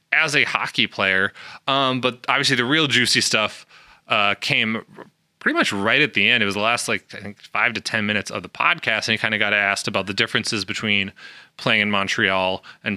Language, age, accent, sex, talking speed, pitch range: English, 20-39, American, male, 215 wpm, 105-130 Hz